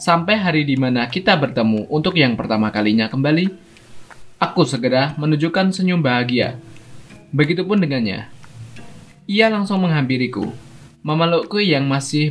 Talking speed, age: 110 wpm, 20-39